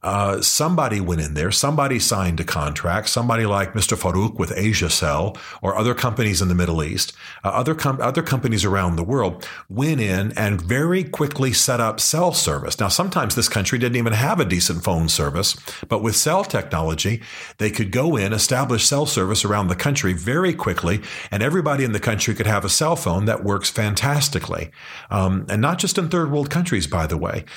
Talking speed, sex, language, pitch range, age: 195 wpm, male, English, 90-125 Hz, 40-59